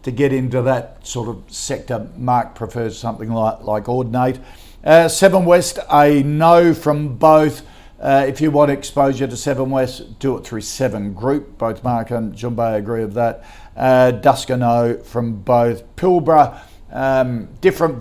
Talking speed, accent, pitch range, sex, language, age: 160 wpm, Australian, 115-140 Hz, male, English, 50-69